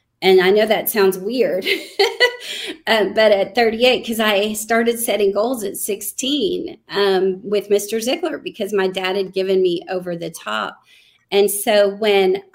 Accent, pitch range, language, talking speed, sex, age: American, 185-215 Hz, English, 160 wpm, female, 30-49